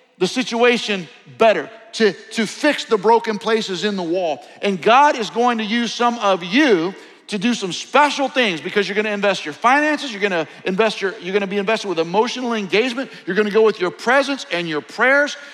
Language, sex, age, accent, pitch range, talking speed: English, male, 50-69, American, 180-255 Hz, 215 wpm